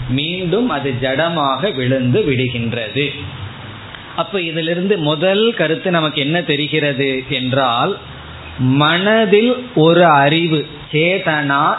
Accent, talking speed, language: native, 85 wpm, Tamil